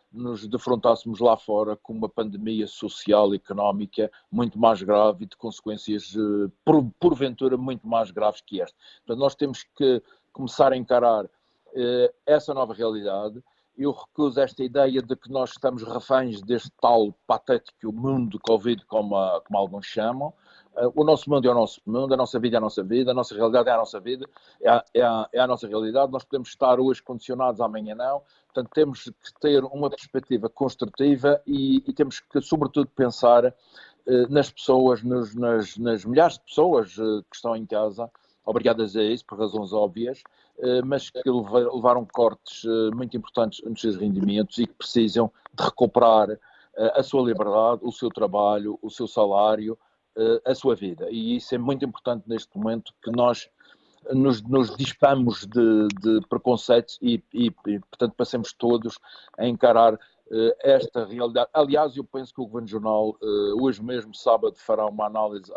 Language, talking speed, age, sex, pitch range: Portuguese, 165 wpm, 50-69, male, 110-130 Hz